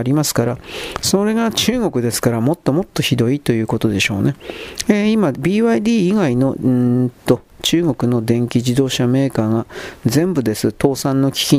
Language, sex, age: Japanese, male, 40-59